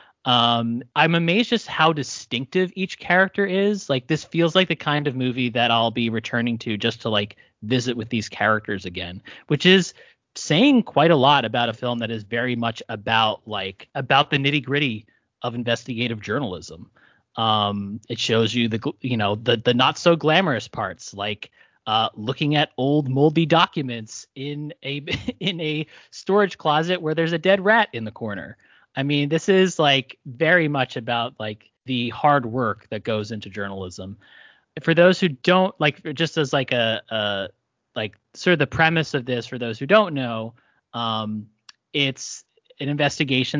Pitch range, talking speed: 115-150 Hz, 170 wpm